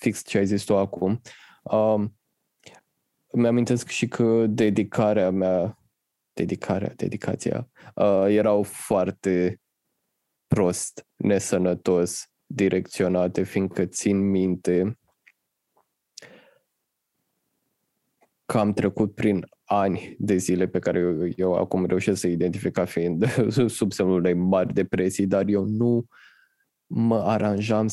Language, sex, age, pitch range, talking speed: Romanian, male, 20-39, 90-105 Hz, 110 wpm